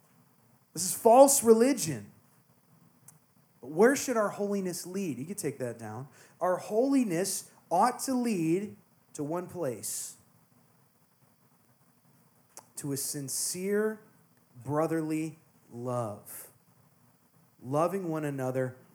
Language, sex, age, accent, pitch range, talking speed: English, male, 30-49, American, 145-180 Hz, 95 wpm